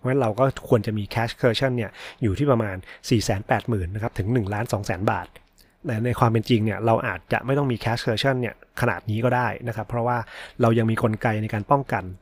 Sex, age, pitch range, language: male, 30-49, 105-125 Hz, Thai